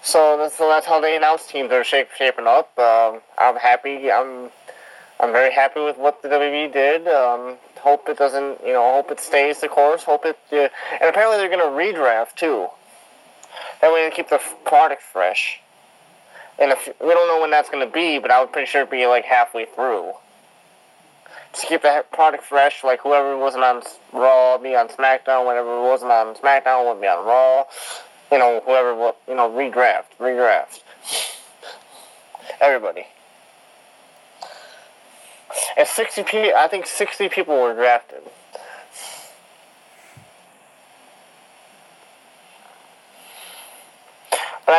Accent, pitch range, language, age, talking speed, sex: American, 125-155 Hz, English, 20-39, 145 wpm, male